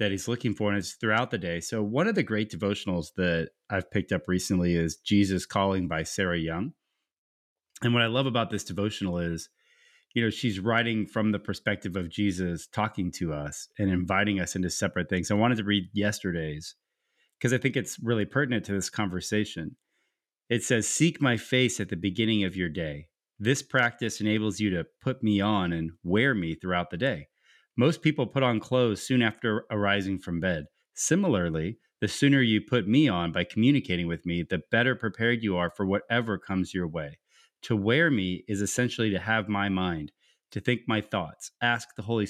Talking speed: 195 wpm